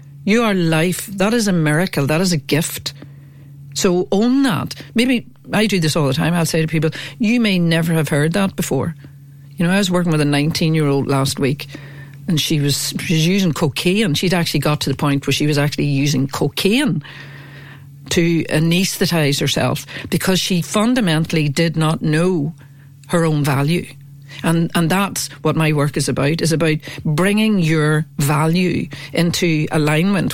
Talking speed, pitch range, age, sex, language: 175 wpm, 145-180 Hz, 60-79, female, English